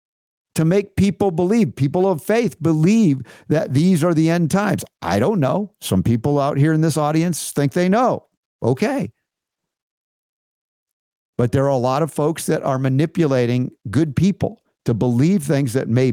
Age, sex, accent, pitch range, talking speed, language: 50-69, male, American, 120-160 Hz, 165 wpm, English